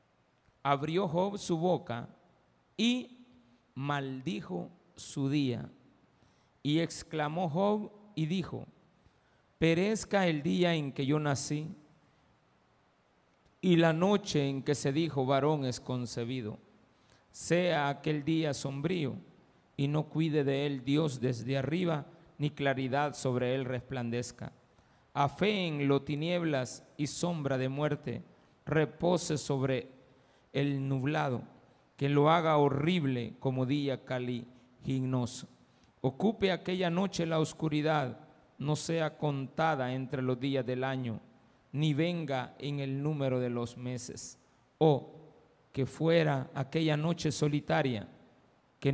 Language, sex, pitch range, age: Spanish, male, 135-165 Hz, 50-69